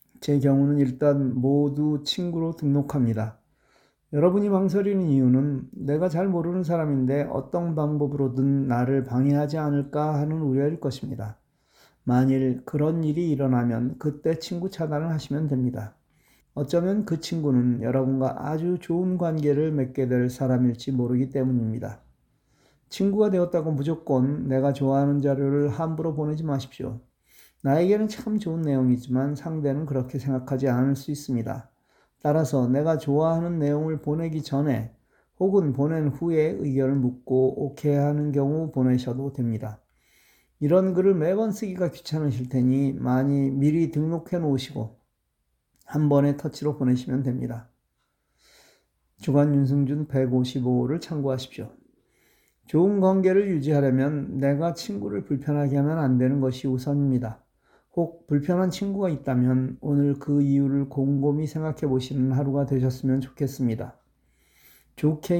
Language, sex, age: Korean, male, 40-59